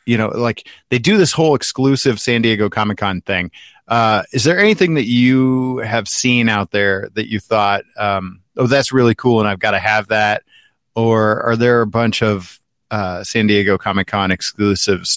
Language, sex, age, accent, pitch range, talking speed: English, male, 30-49, American, 100-120 Hz, 195 wpm